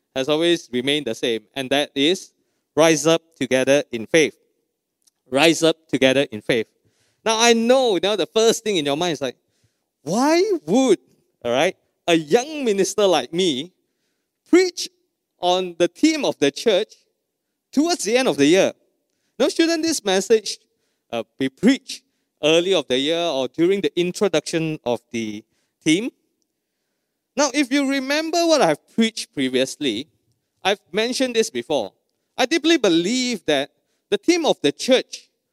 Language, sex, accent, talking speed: English, male, Malaysian, 150 wpm